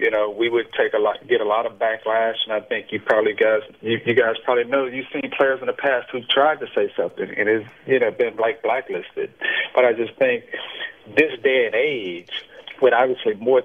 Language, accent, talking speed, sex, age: English, American, 225 wpm, male, 40-59